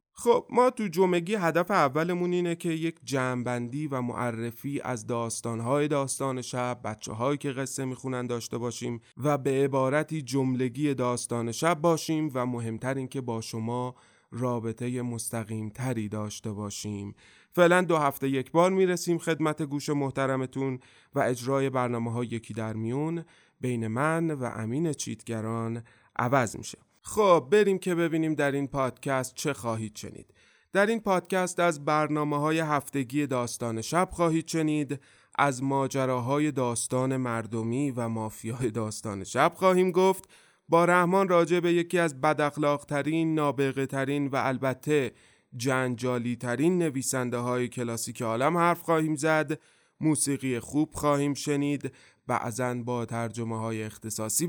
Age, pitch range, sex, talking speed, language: 30-49, 120-160 Hz, male, 130 wpm, Persian